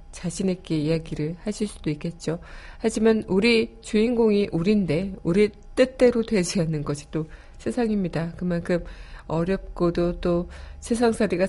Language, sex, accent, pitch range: Korean, female, native, 165-205 Hz